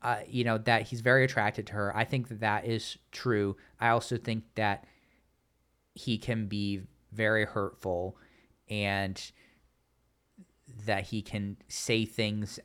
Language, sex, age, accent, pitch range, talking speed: English, male, 30-49, American, 105-140 Hz, 140 wpm